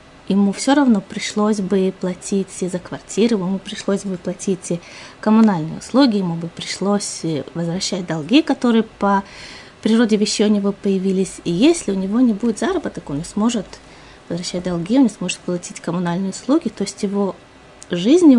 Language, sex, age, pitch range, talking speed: Russian, female, 20-39, 190-230 Hz, 155 wpm